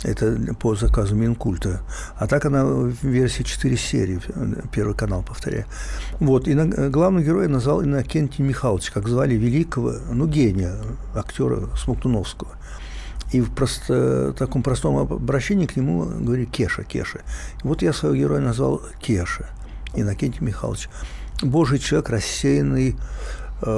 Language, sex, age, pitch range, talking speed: Russian, male, 60-79, 95-140 Hz, 130 wpm